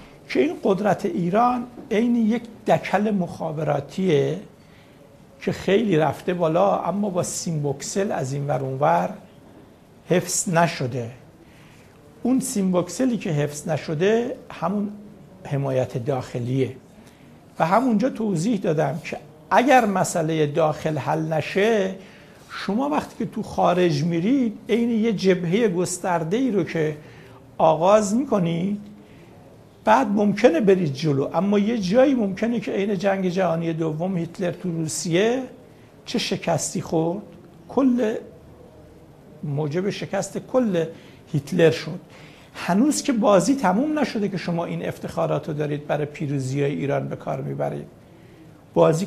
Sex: male